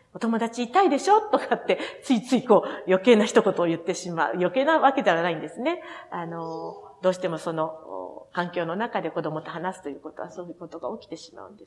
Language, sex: Japanese, female